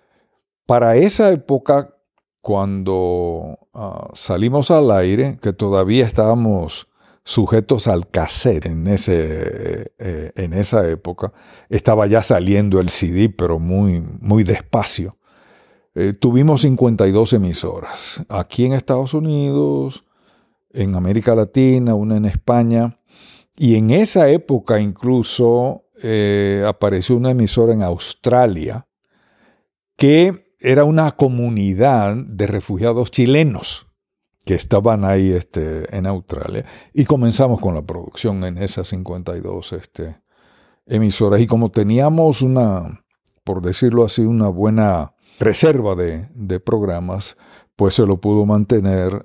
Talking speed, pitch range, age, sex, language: 110 wpm, 95-125 Hz, 50-69, male, Spanish